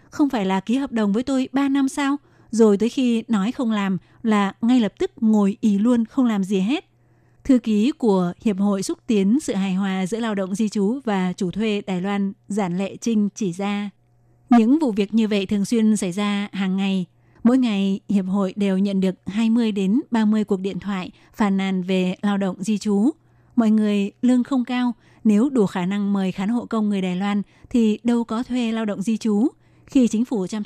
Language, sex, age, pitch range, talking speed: Vietnamese, female, 20-39, 195-230 Hz, 220 wpm